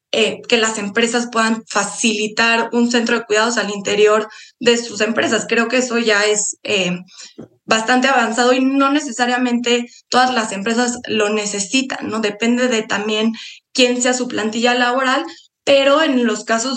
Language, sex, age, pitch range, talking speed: Spanish, female, 20-39, 210-255 Hz, 155 wpm